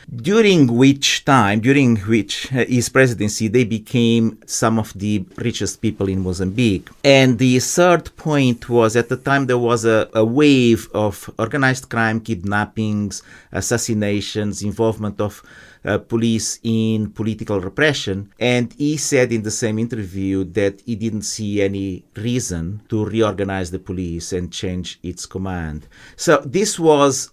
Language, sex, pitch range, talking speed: English, male, 100-125 Hz, 145 wpm